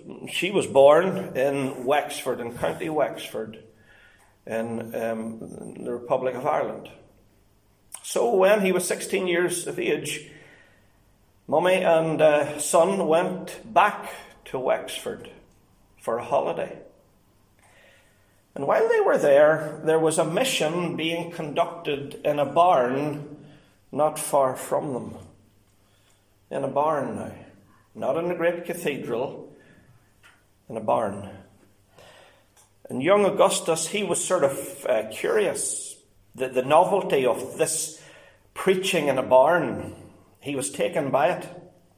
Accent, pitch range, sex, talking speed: Swedish, 125-175 Hz, male, 125 wpm